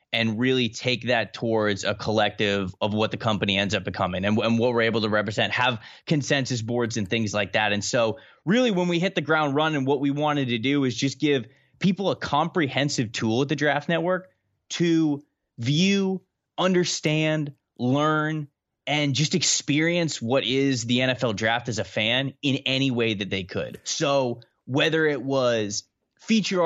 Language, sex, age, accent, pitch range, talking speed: English, male, 20-39, American, 115-150 Hz, 180 wpm